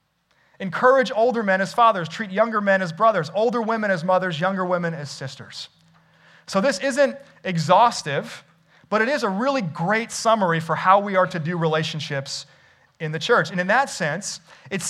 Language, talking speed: English, 175 wpm